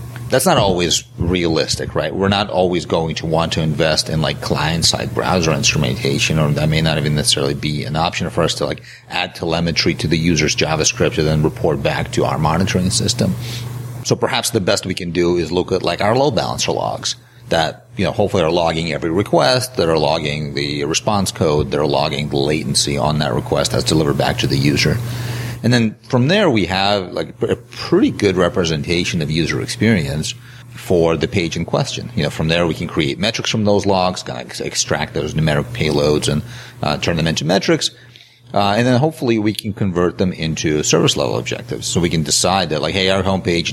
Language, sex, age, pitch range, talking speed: English, male, 40-59, 80-120 Hz, 210 wpm